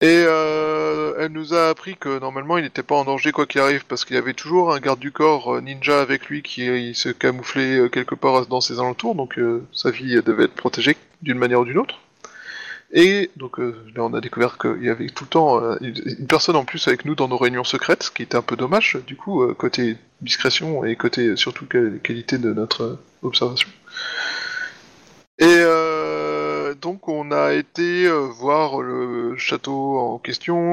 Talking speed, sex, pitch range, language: 195 wpm, male, 125-155 Hz, French